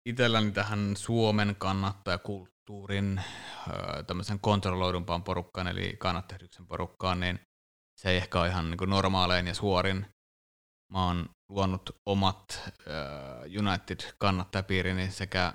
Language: Finnish